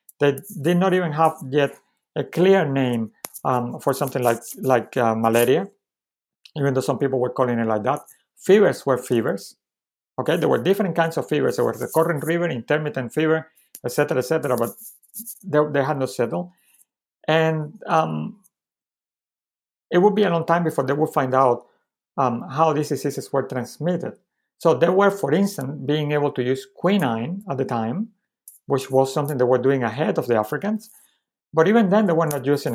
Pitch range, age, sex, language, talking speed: 125-160 Hz, 60-79, male, English, 185 wpm